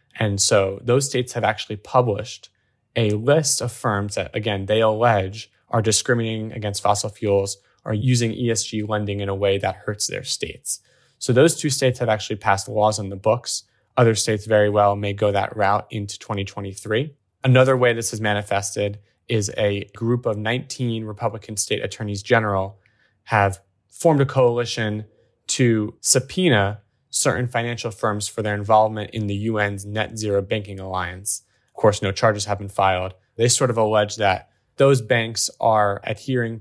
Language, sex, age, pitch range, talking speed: English, male, 20-39, 100-120 Hz, 165 wpm